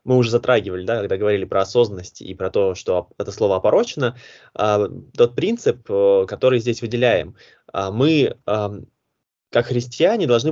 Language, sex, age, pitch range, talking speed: Russian, male, 20-39, 105-140 Hz, 135 wpm